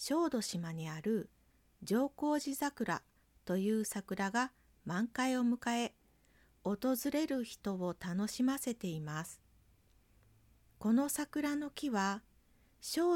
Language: Japanese